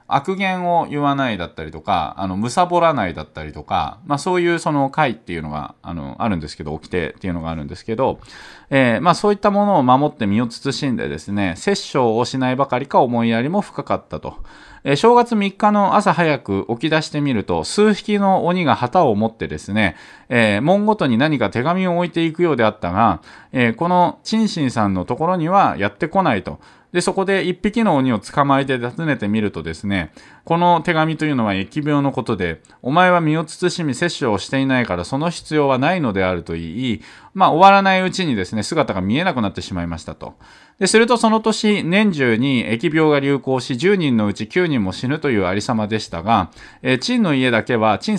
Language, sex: Japanese, male